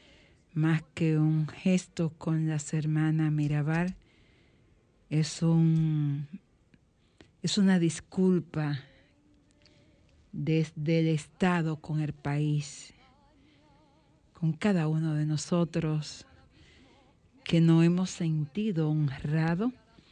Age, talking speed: 50-69, 85 wpm